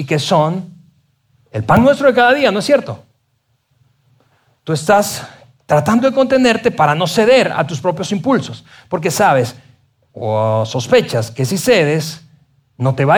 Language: Spanish